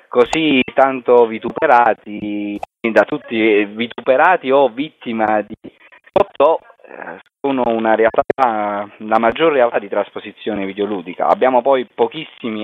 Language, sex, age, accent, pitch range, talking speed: Italian, male, 30-49, native, 105-130 Hz, 110 wpm